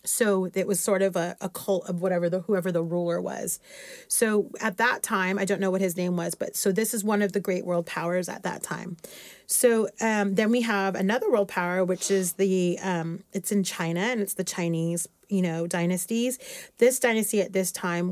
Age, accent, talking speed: 30-49, American, 220 wpm